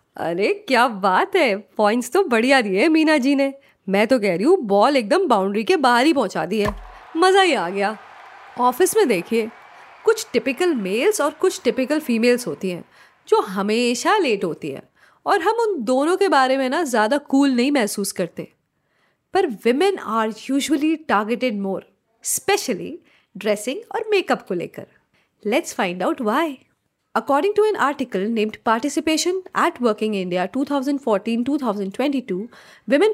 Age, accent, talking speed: 30-49, native, 155 wpm